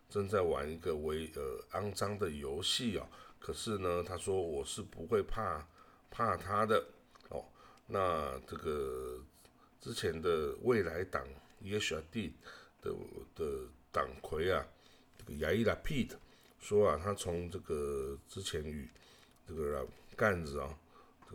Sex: male